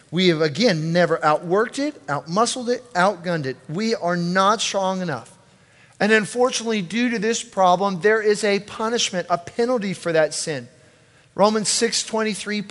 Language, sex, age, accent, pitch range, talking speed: English, male, 40-59, American, 145-200 Hz, 150 wpm